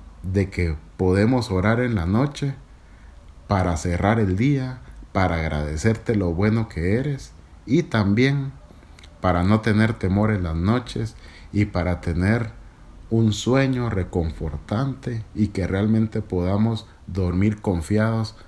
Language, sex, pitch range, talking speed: Spanish, male, 85-110 Hz, 125 wpm